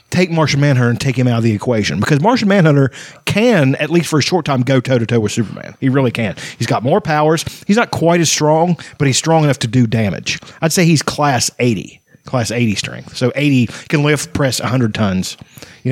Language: English